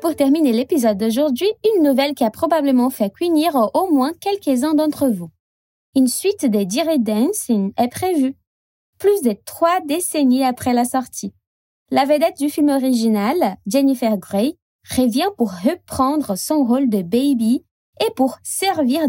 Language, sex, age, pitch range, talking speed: Portuguese, female, 20-39, 225-310 Hz, 150 wpm